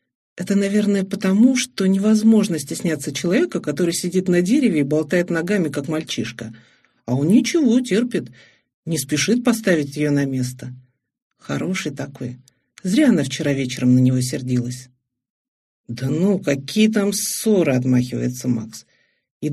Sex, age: male, 50-69